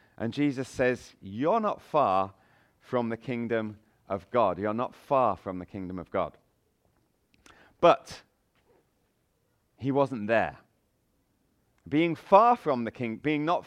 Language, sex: English, male